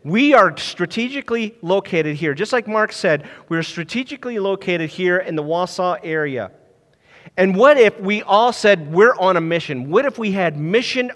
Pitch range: 150-220 Hz